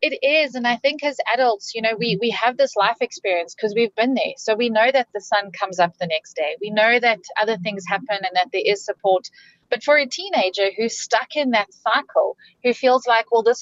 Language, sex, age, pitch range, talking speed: English, female, 30-49, 200-250 Hz, 240 wpm